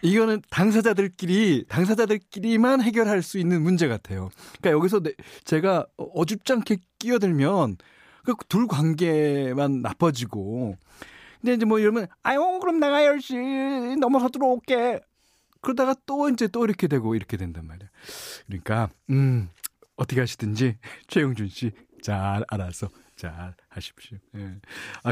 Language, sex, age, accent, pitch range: Korean, male, 40-59, native, 115-190 Hz